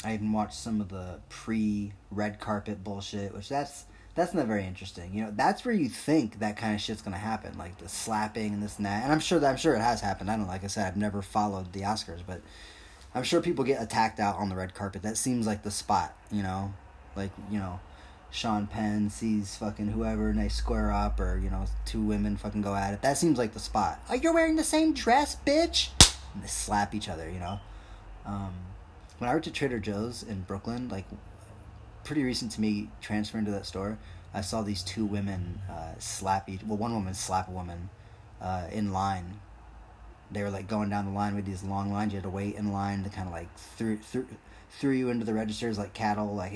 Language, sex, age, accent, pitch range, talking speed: English, male, 20-39, American, 95-110 Hz, 230 wpm